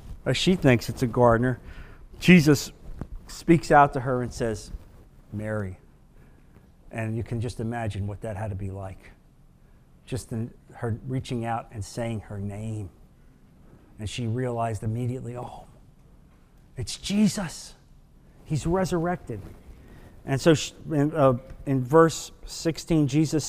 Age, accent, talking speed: 50-69, American, 125 wpm